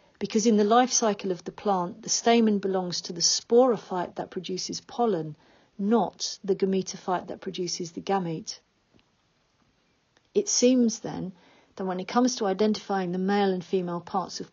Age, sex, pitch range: 40-59, female, 180-210 Hz